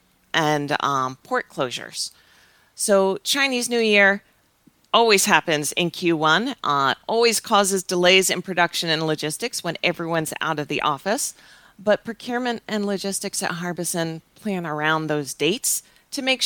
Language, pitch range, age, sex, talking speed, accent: English, 150-195 Hz, 40-59, female, 140 wpm, American